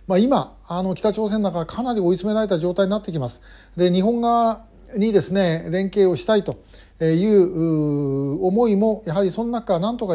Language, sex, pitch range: Japanese, male, 150-205 Hz